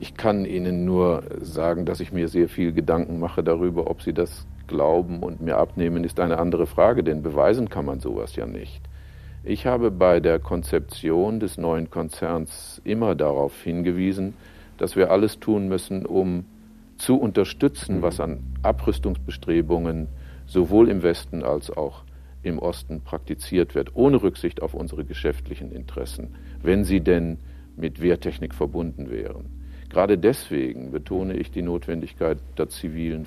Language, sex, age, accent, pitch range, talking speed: German, male, 50-69, German, 75-95 Hz, 150 wpm